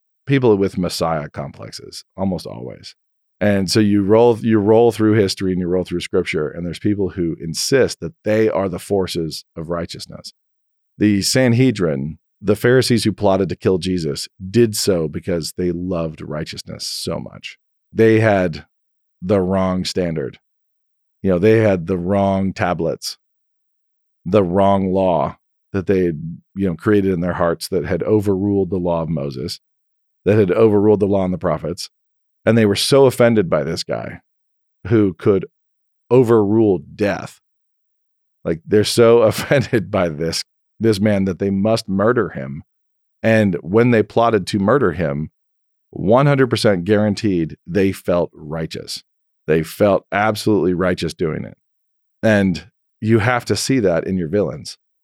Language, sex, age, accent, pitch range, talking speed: English, male, 40-59, American, 90-110 Hz, 150 wpm